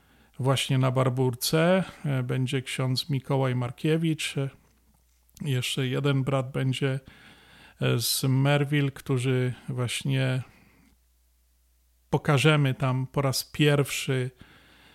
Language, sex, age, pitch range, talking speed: Polish, male, 40-59, 130-150 Hz, 80 wpm